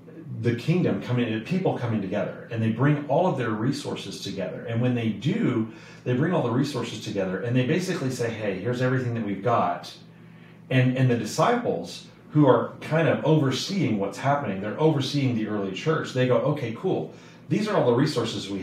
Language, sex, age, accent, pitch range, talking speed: English, male, 40-59, American, 115-160 Hz, 195 wpm